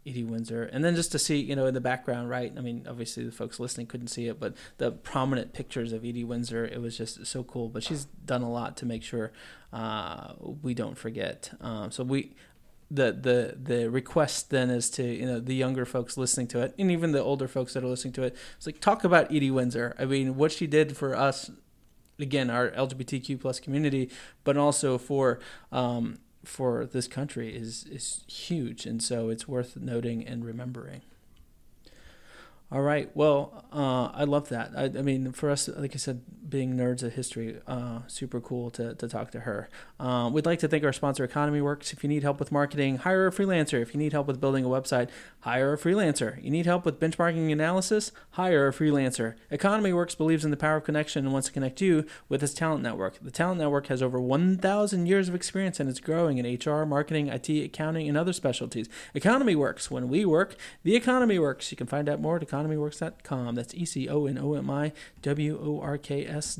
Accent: American